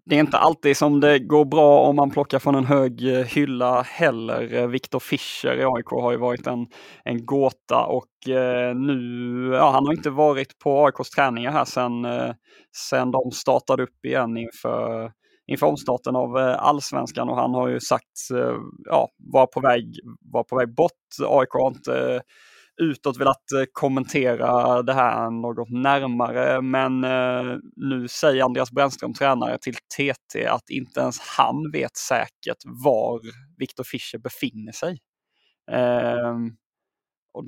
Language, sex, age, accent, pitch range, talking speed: Swedish, male, 20-39, native, 120-140 Hz, 145 wpm